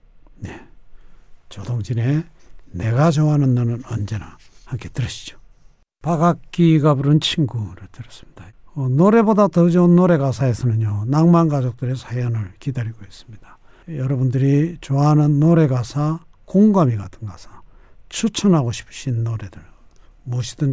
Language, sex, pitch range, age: Korean, male, 120-175 Hz, 60-79